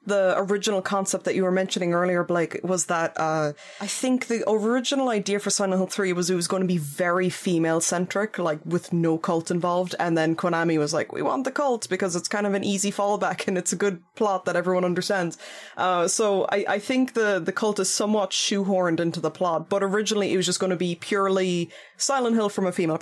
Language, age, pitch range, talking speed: English, 20-39, 175-205 Hz, 225 wpm